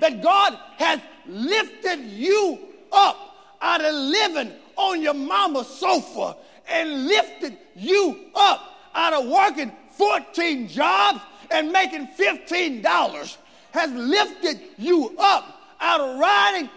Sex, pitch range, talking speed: male, 295-385 Hz, 115 wpm